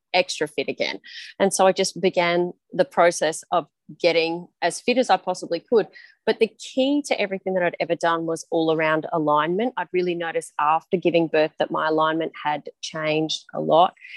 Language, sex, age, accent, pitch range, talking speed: English, female, 30-49, Australian, 160-190 Hz, 185 wpm